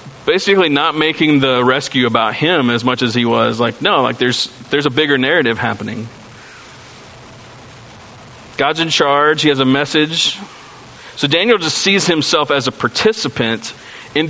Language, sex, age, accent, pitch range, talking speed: English, male, 40-59, American, 115-140 Hz, 155 wpm